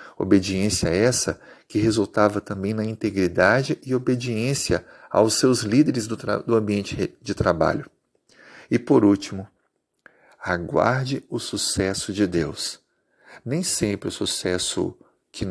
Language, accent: Portuguese, Brazilian